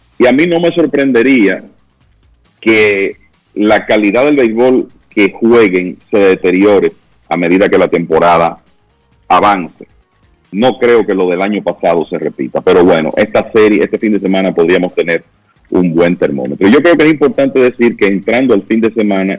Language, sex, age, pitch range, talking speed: Spanish, male, 40-59, 95-115 Hz, 170 wpm